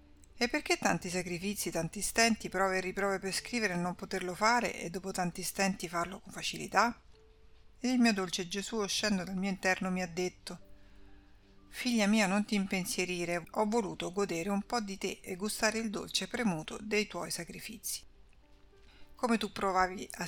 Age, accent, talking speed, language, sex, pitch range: 50-69, native, 170 wpm, Italian, female, 180-210 Hz